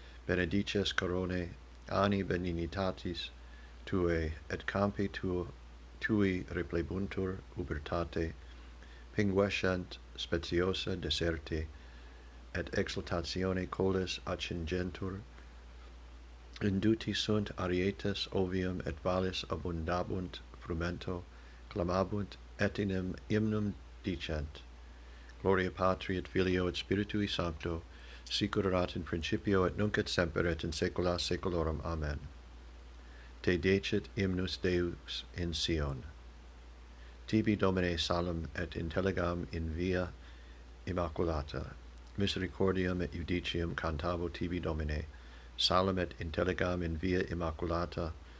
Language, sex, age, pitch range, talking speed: English, male, 60-79, 70-95 Hz, 90 wpm